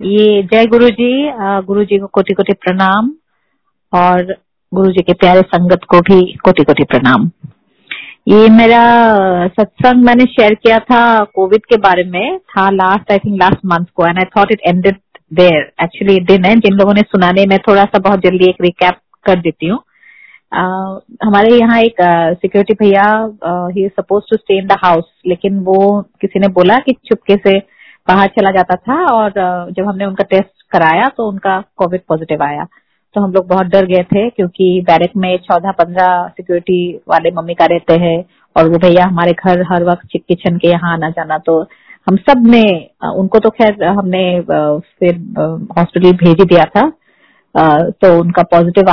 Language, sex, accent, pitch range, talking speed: Hindi, female, native, 175-205 Hz, 165 wpm